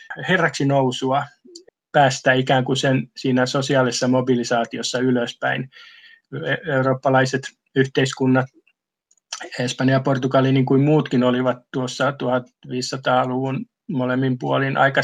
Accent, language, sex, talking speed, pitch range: native, Finnish, male, 95 wpm, 125-140 Hz